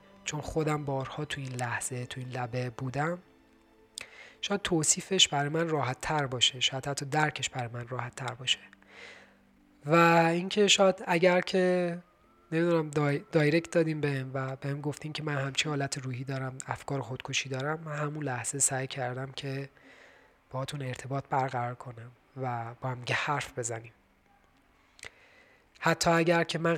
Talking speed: 150 wpm